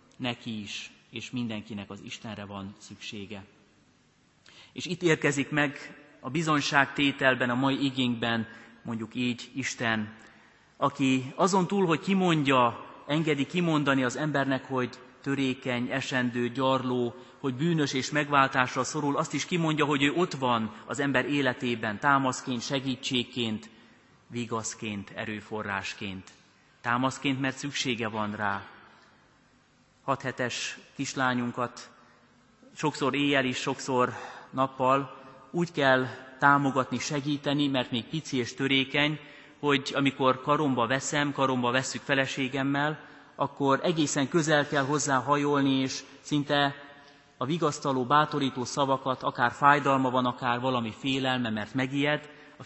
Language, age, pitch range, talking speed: Hungarian, 30-49, 120-145 Hz, 115 wpm